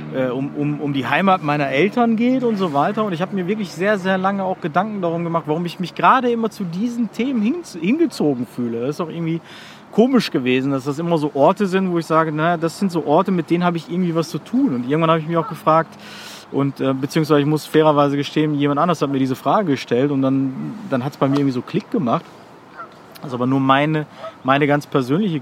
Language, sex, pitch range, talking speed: German, male, 145-195 Hz, 240 wpm